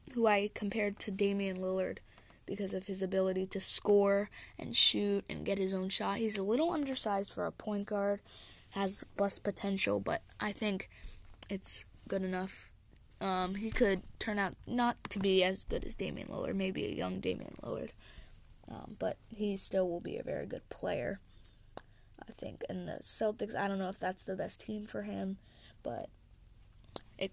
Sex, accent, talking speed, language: female, American, 180 wpm, English